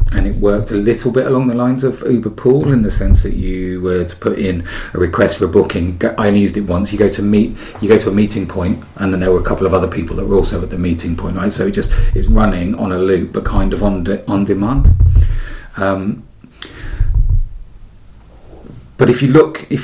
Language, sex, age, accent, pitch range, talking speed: English, male, 40-59, British, 90-110 Hz, 240 wpm